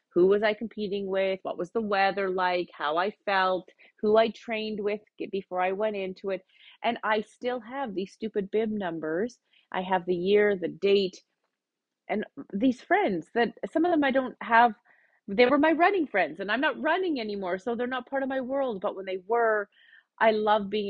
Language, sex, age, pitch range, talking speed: English, female, 30-49, 190-250 Hz, 200 wpm